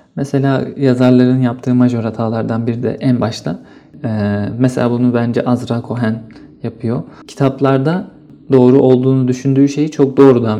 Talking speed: 130 wpm